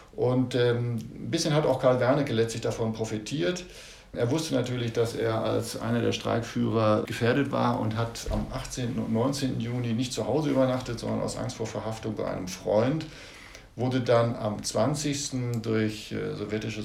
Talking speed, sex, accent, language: 170 wpm, male, German, German